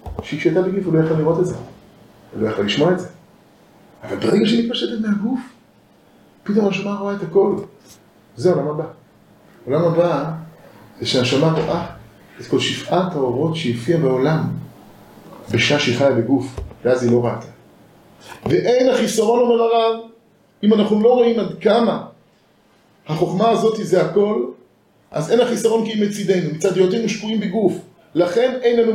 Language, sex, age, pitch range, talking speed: Hebrew, male, 40-59, 160-225 Hz, 145 wpm